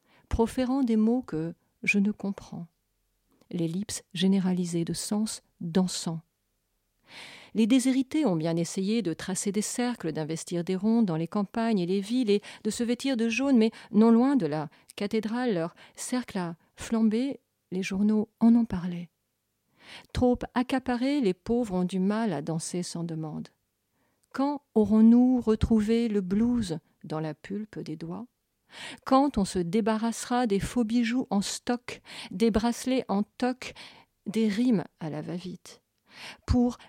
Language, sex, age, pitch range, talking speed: French, female, 50-69, 180-240 Hz, 150 wpm